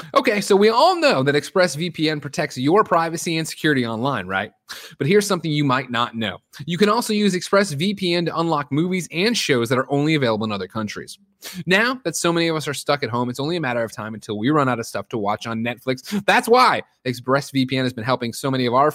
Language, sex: English, male